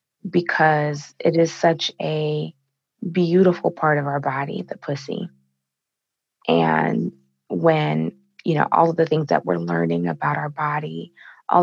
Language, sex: English, female